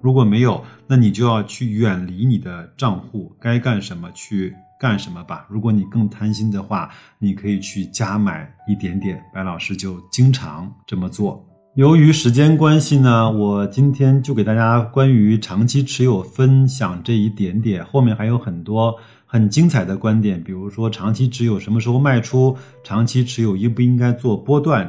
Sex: male